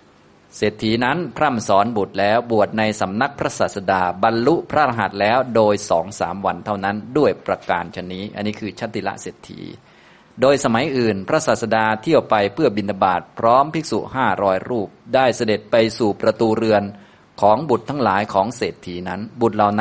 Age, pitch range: 20-39, 100-120 Hz